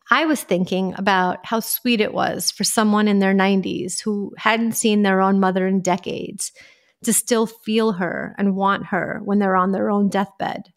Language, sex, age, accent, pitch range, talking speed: English, female, 30-49, American, 190-225 Hz, 190 wpm